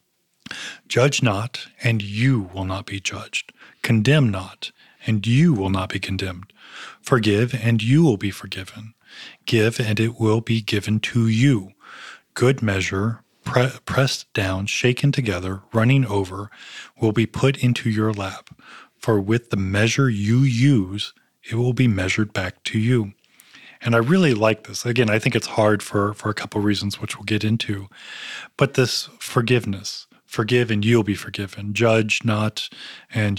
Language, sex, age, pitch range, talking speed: English, male, 40-59, 105-120 Hz, 160 wpm